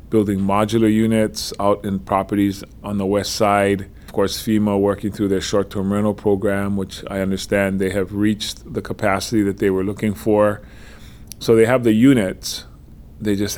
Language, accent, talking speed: English, American, 170 wpm